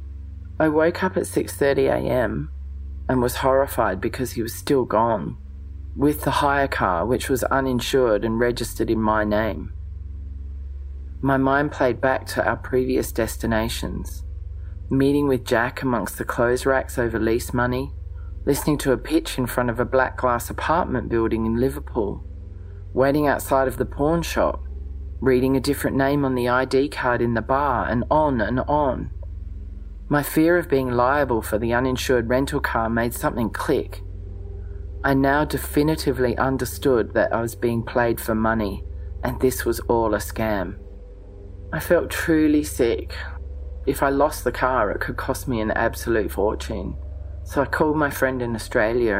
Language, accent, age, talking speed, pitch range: English, Australian, 40-59, 160 wpm, 80-130 Hz